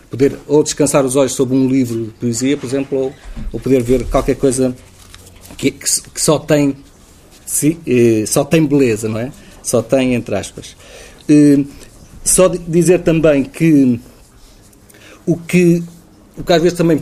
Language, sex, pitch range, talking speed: Portuguese, male, 125-155 Hz, 160 wpm